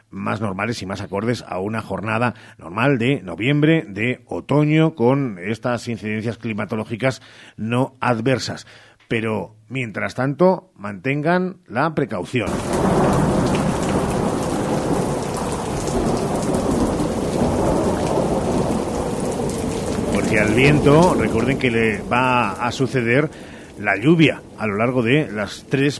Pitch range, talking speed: 110-140 Hz, 95 wpm